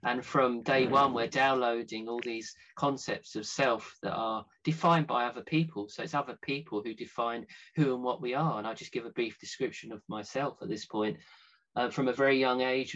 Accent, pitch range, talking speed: British, 115-140 Hz, 215 wpm